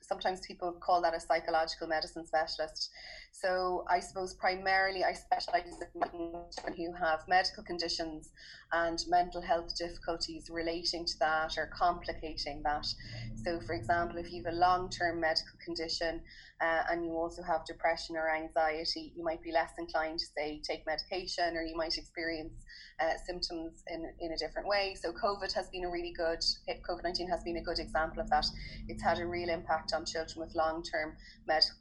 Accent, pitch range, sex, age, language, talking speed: Irish, 160-180 Hz, female, 20-39, English, 175 wpm